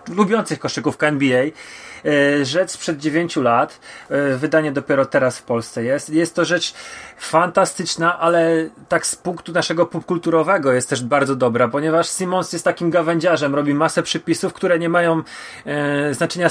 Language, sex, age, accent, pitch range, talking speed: Polish, male, 30-49, native, 145-175 Hz, 140 wpm